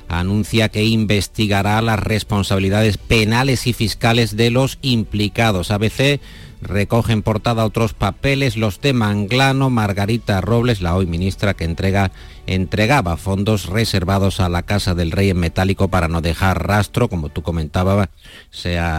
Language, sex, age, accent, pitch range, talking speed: Spanish, male, 50-69, Spanish, 95-115 Hz, 135 wpm